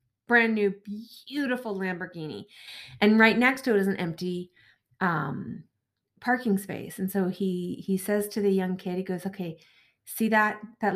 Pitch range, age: 175-210 Hz, 30-49